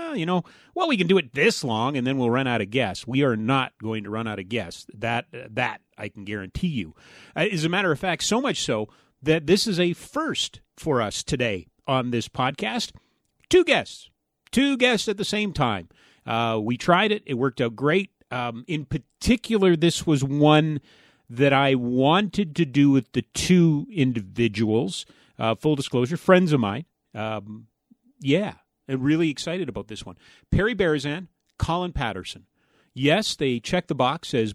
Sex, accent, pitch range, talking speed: male, American, 120-170 Hz, 185 wpm